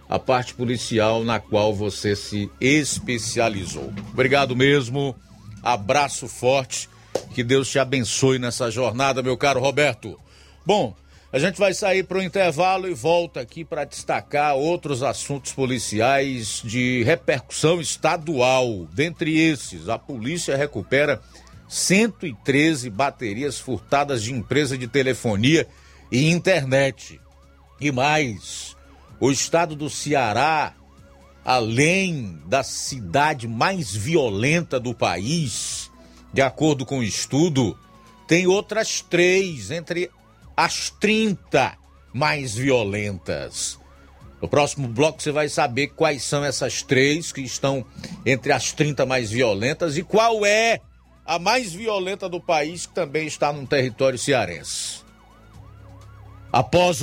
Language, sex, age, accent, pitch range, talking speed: Portuguese, male, 50-69, Brazilian, 110-155 Hz, 120 wpm